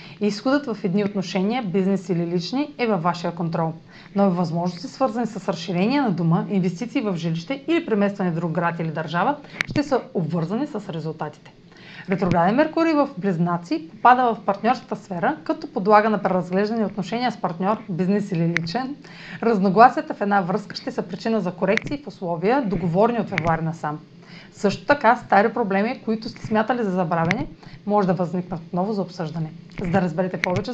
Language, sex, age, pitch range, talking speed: Bulgarian, female, 30-49, 180-230 Hz, 170 wpm